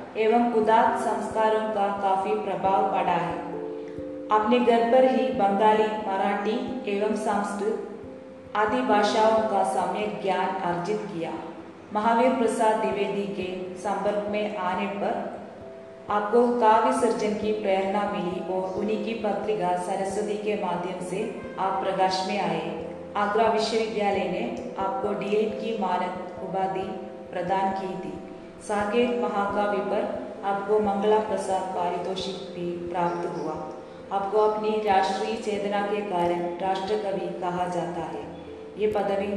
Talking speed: 115 wpm